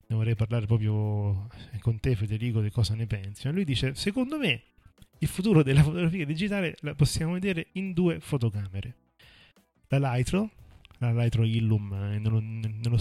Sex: male